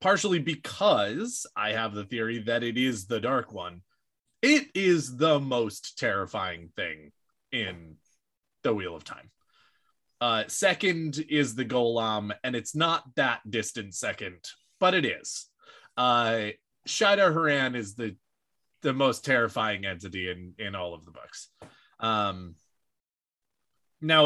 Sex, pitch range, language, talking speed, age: male, 105-150 Hz, English, 135 wpm, 20-39